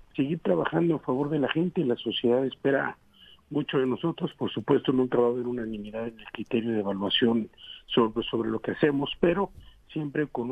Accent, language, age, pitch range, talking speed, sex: Mexican, Spanish, 50-69, 125-160 Hz, 195 wpm, male